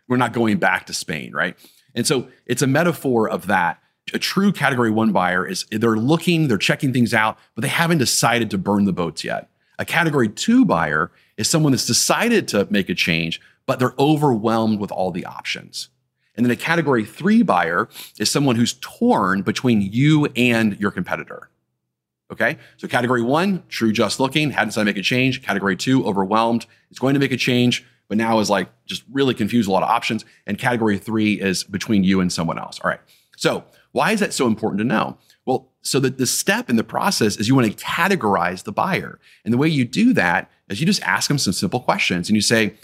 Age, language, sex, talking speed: 30-49, English, male, 215 wpm